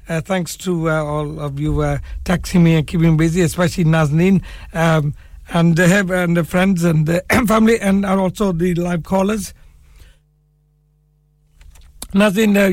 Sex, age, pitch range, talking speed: male, 60-79, 155-195 Hz, 135 wpm